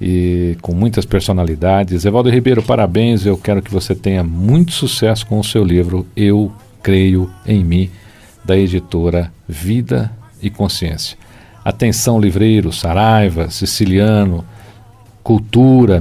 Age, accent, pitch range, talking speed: 50-69, Brazilian, 95-115 Hz, 120 wpm